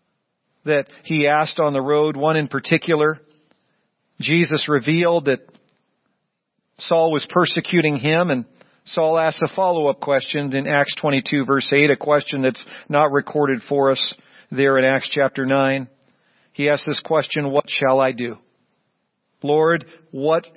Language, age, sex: English, 50-69, male